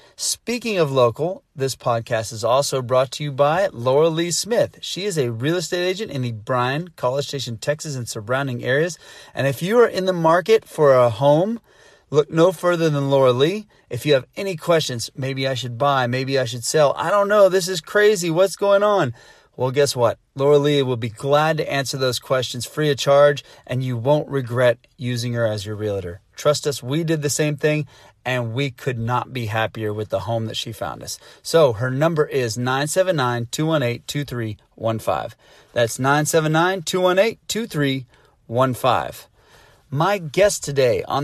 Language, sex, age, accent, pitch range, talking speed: English, male, 30-49, American, 125-160 Hz, 180 wpm